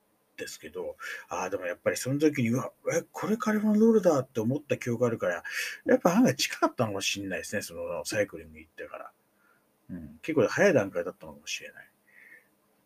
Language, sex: Japanese, male